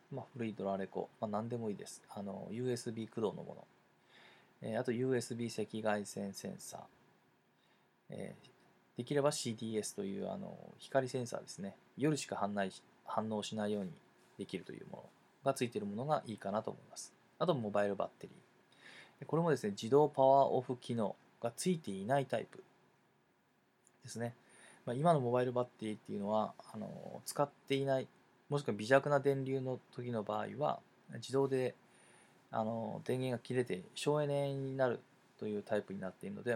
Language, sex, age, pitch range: Japanese, male, 20-39, 110-140 Hz